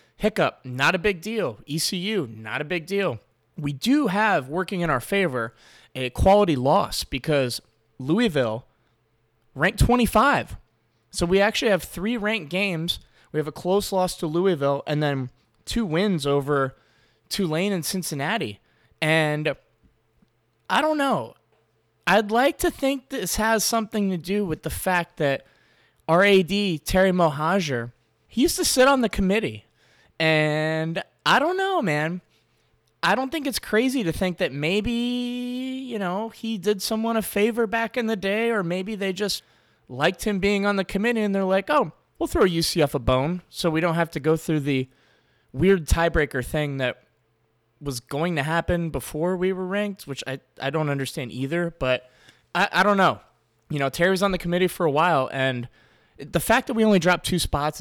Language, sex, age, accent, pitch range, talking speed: English, male, 20-39, American, 140-205 Hz, 170 wpm